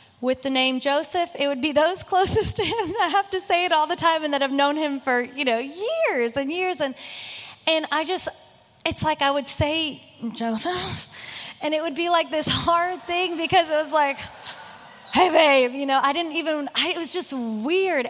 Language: English